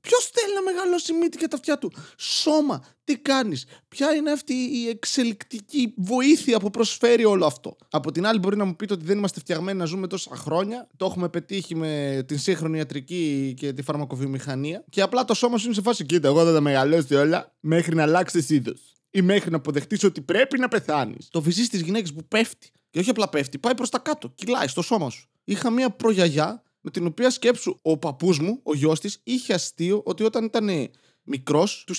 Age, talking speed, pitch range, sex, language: 20-39, 210 wpm, 170-255 Hz, male, Greek